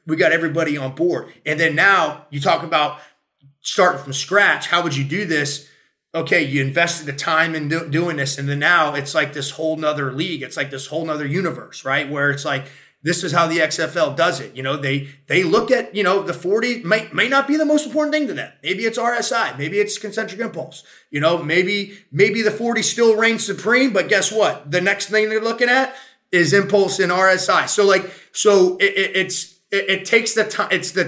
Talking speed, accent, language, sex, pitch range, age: 215 wpm, American, English, male, 160-210 Hz, 30-49